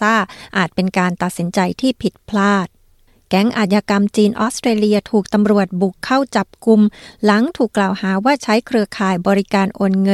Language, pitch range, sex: Thai, 190-220 Hz, female